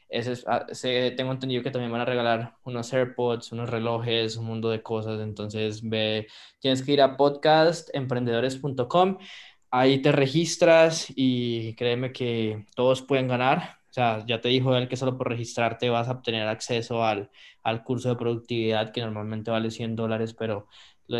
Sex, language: male, Spanish